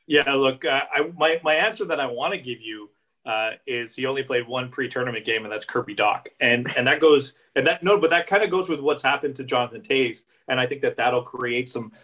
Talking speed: 255 wpm